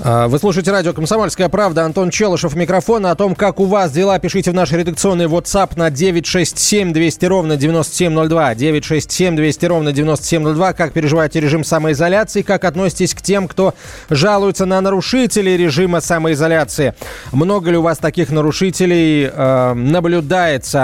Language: Russian